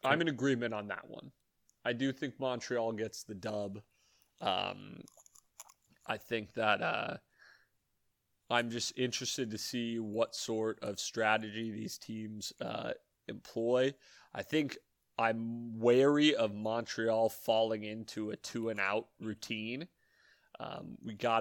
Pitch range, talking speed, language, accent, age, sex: 105-120 Hz, 125 wpm, English, American, 30-49, male